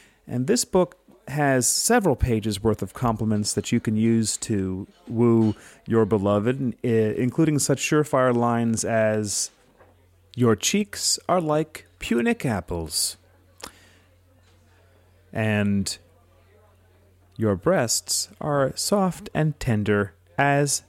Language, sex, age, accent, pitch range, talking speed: English, male, 30-49, American, 95-140 Hz, 105 wpm